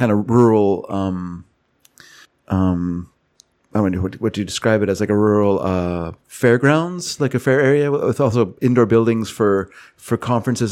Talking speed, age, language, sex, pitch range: 160 wpm, 40-59, English, male, 100-120 Hz